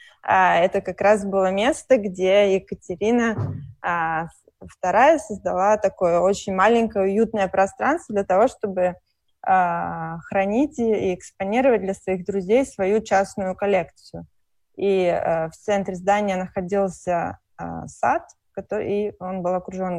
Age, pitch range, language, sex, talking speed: 20-39, 180-215 Hz, Russian, female, 125 wpm